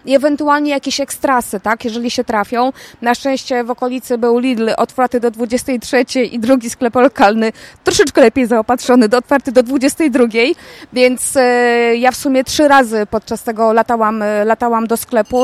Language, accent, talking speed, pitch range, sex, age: Polish, native, 160 wpm, 235-280 Hz, female, 20-39